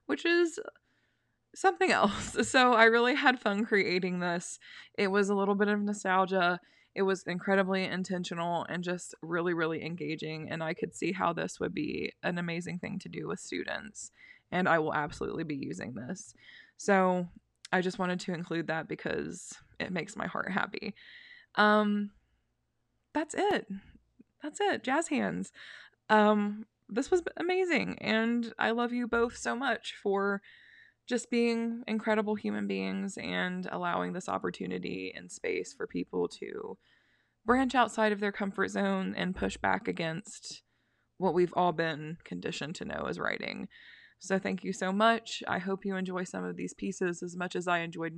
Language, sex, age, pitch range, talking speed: English, female, 20-39, 170-225 Hz, 165 wpm